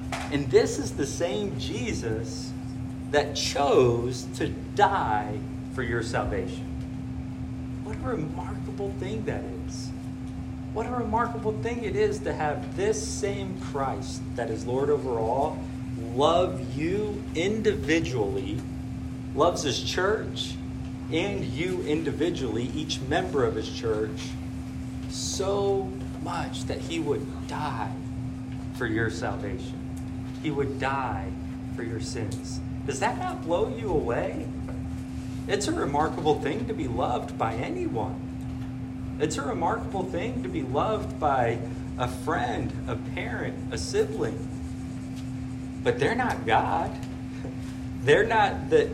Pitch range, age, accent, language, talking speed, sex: 120-130 Hz, 40-59, American, English, 125 wpm, male